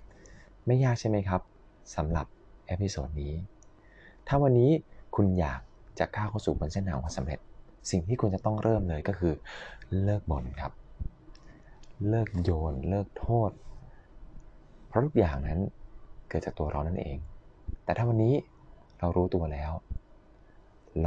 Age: 20-39